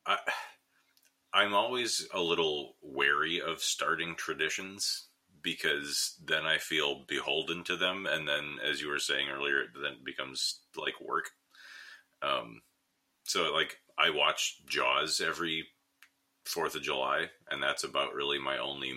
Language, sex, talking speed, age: English, male, 140 wpm, 30-49